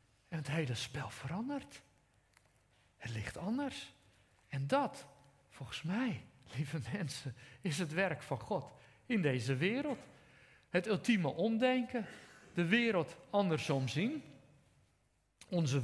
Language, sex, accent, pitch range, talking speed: Dutch, male, Dutch, 130-200 Hz, 110 wpm